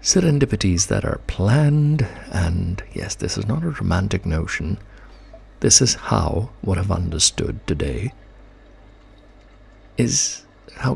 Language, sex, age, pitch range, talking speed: English, male, 60-79, 90-120 Hz, 115 wpm